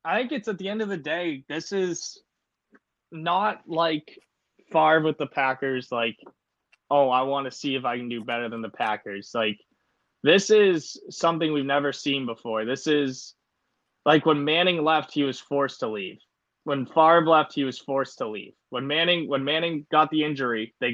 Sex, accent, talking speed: male, American, 185 wpm